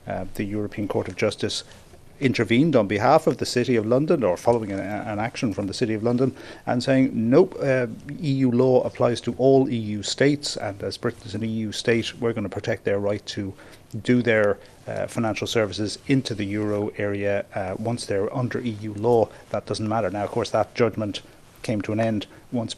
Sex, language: male, English